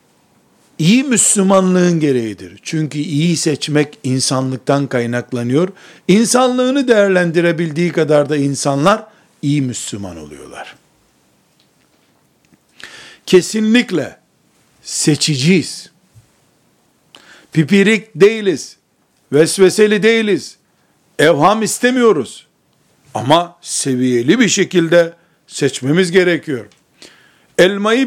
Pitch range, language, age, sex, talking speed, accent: 150-200 Hz, Turkish, 60-79, male, 65 wpm, native